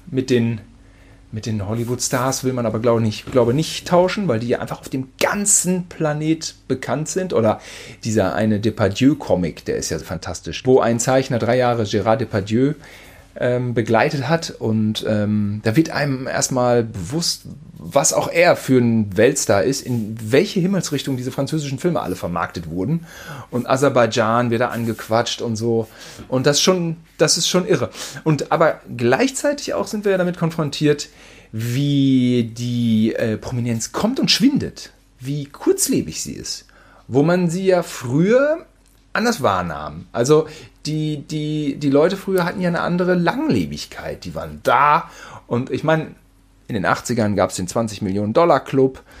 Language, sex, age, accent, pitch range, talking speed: German, male, 40-59, German, 115-155 Hz, 150 wpm